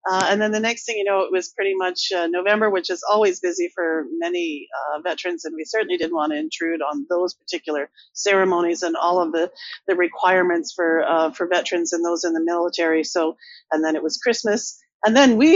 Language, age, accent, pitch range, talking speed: English, 40-59, American, 170-240 Hz, 220 wpm